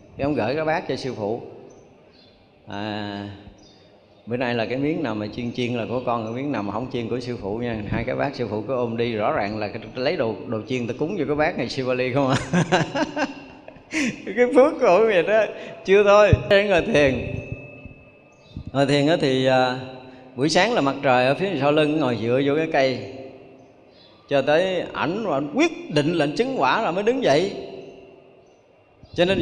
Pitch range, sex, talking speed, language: 125-170 Hz, male, 205 wpm, Vietnamese